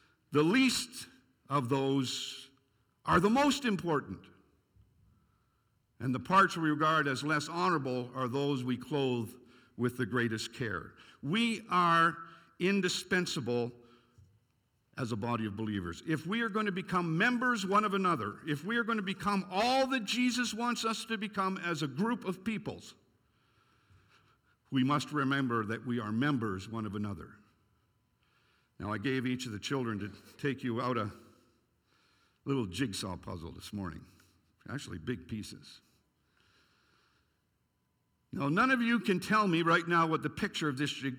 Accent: American